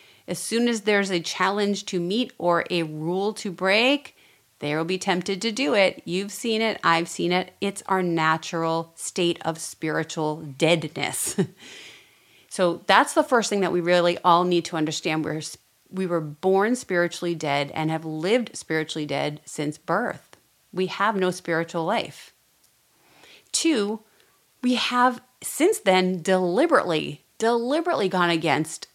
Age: 30-49